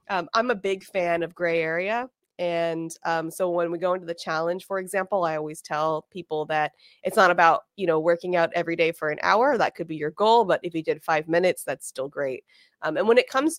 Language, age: English, 20-39